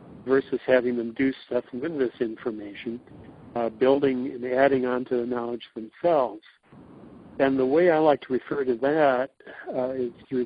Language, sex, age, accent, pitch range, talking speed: English, male, 60-79, American, 120-145 Hz, 165 wpm